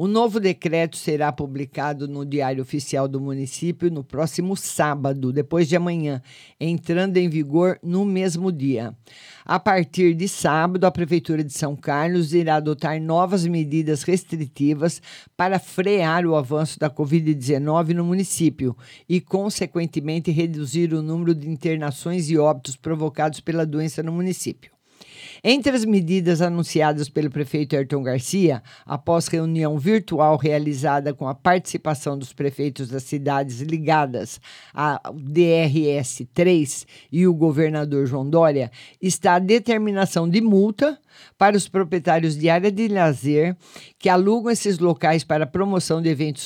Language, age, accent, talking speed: Portuguese, 50-69, Brazilian, 135 wpm